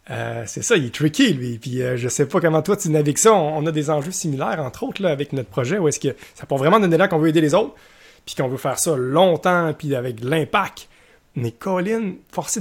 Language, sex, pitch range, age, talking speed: French, male, 125-160 Hz, 30-49, 255 wpm